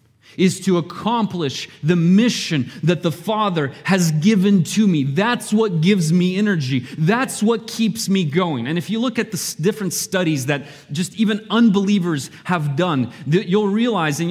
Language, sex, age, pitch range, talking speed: English, male, 30-49, 145-200 Hz, 165 wpm